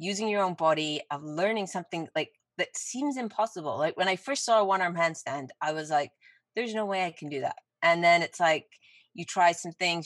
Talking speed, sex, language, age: 220 wpm, female, English, 30-49